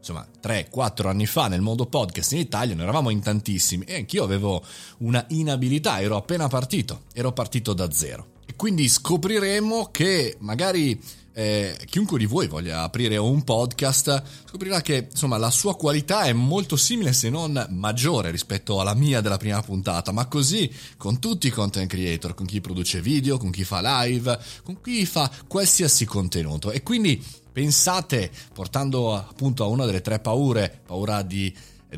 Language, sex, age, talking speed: Italian, male, 30-49, 165 wpm